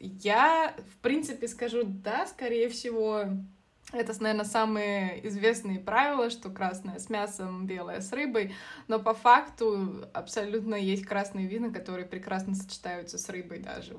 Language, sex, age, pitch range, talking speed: Russian, female, 20-39, 190-235 Hz, 135 wpm